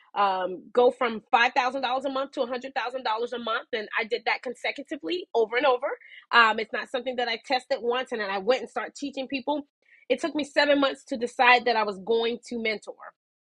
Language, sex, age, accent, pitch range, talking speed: English, female, 20-39, American, 225-280 Hz, 210 wpm